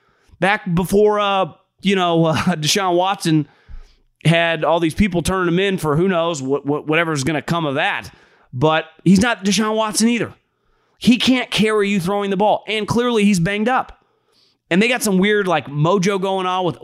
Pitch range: 155-215 Hz